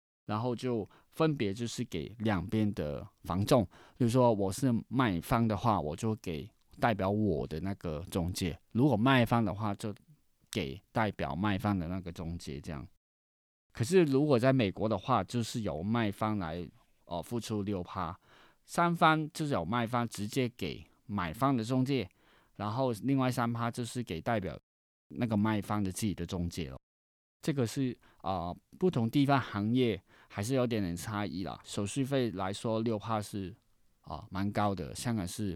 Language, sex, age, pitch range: Chinese, male, 20-39, 95-125 Hz